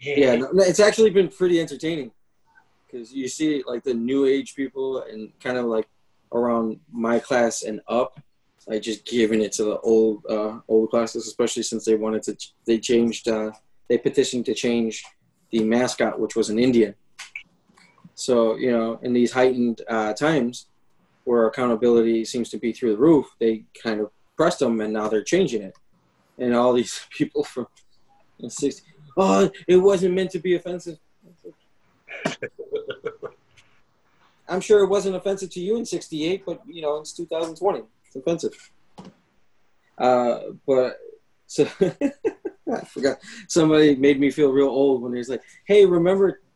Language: English